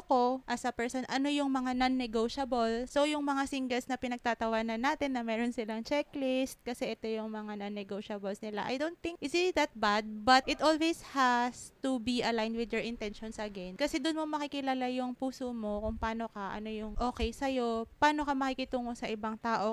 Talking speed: 195 wpm